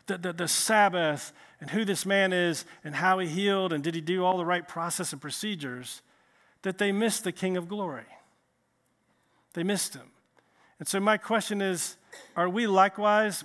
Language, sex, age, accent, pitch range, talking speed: English, male, 40-59, American, 175-220 Hz, 185 wpm